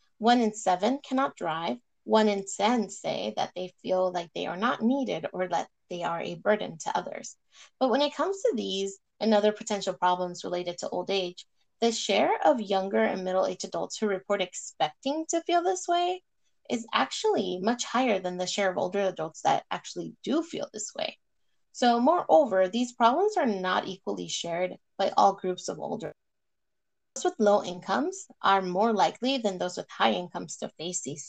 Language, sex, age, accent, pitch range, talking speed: English, female, 20-39, American, 185-260 Hz, 185 wpm